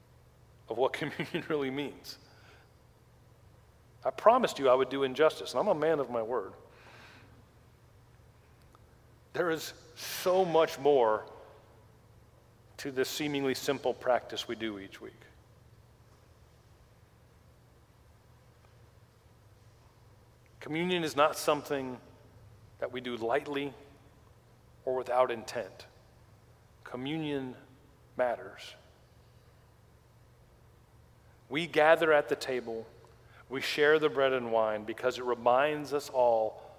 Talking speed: 100 wpm